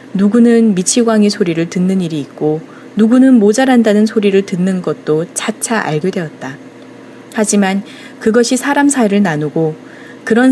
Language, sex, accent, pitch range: Korean, female, native, 170-240 Hz